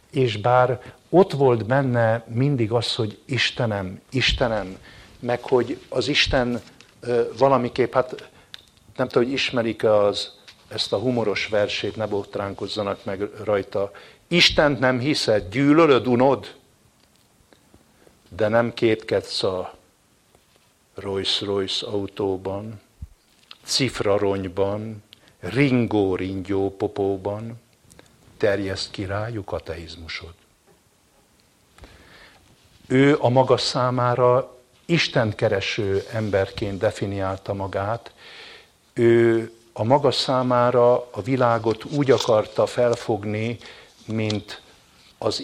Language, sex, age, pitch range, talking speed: English, male, 60-79, 100-125 Hz, 85 wpm